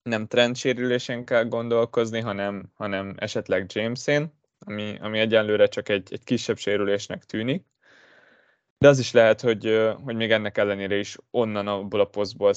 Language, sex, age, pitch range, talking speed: Hungarian, male, 20-39, 105-125 Hz, 150 wpm